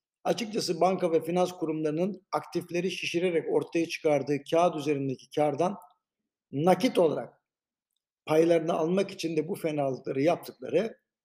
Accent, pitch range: native, 155-200 Hz